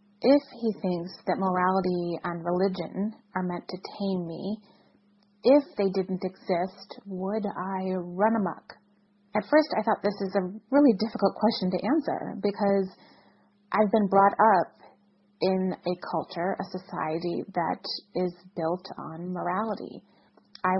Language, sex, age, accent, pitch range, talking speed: English, female, 30-49, American, 175-205 Hz, 140 wpm